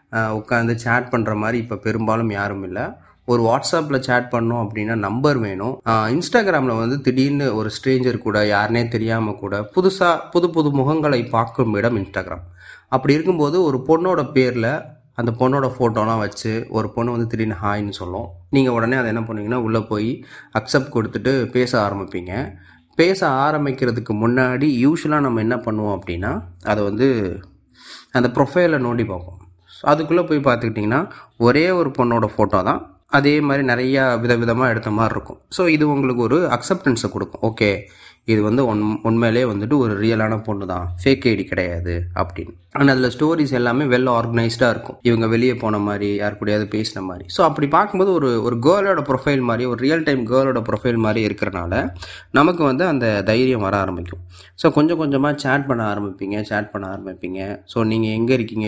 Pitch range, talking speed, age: 105-130 Hz, 155 wpm, 30-49